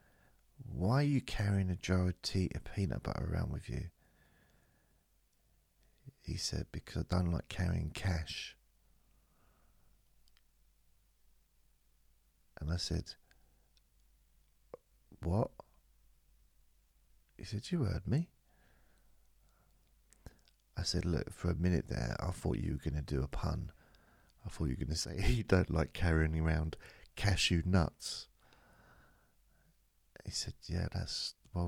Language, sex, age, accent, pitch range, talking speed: English, male, 40-59, British, 80-100 Hz, 125 wpm